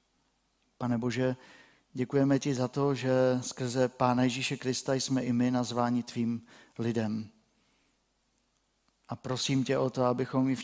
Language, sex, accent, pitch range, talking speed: Czech, male, native, 115-135 Hz, 140 wpm